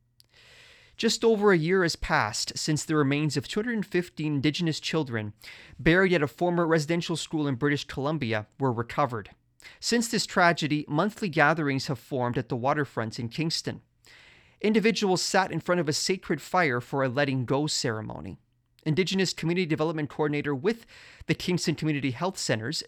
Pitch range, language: 125-170 Hz, English